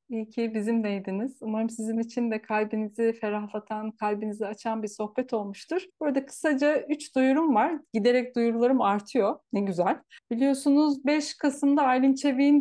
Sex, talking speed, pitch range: female, 145 wpm, 215-265 Hz